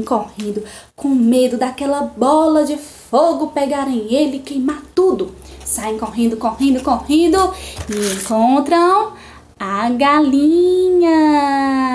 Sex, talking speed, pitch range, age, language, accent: female, 105 wpm, 260-405 Hz, 10-29, Portuguese, Brazilian